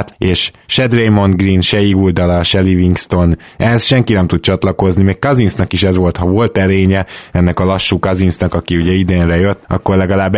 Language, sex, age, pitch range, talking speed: Hungarian, male, 20-39, 90-105 Hz, 180 wpm